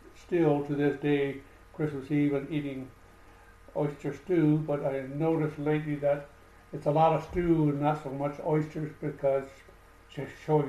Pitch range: 135-155 Hz